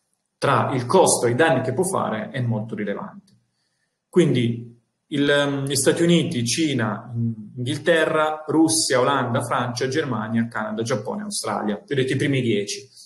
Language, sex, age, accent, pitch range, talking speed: Italian, male, 30-49, native, 115-140 Hz, 140 wpm